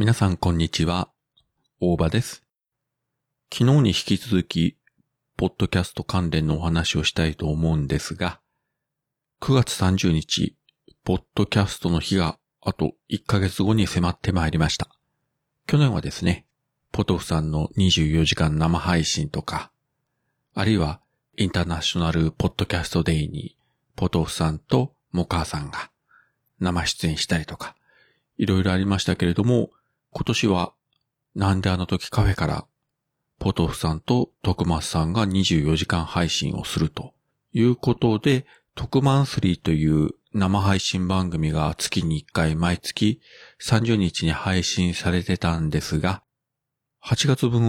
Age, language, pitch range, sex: 40-59, Japanese, 80-110 Hz, male